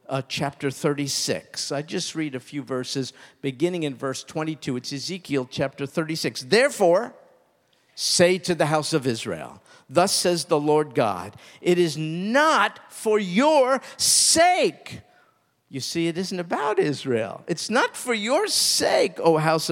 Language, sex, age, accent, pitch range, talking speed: English, male, 50-69, American, 130-185 Hz, 145 wpm